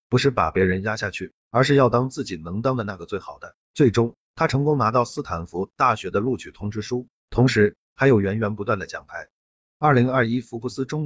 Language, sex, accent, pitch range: Chinese, male, native, 100-130 Hz